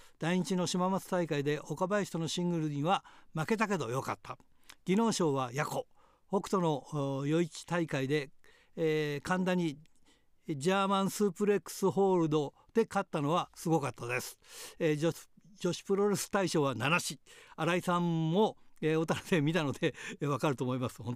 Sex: male